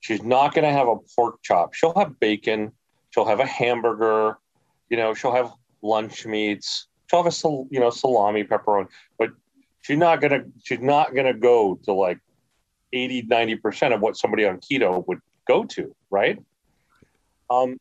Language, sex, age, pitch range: English, male, 40-59, 105-140 Hz